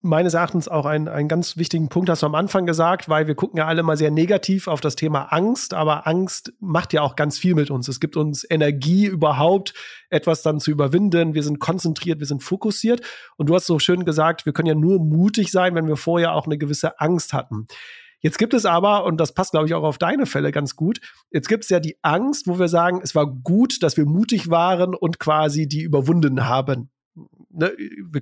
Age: 40-59